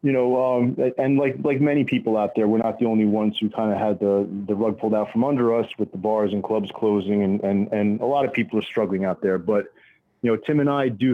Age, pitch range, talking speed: 30-49, 105-115 Hz, 275 wpm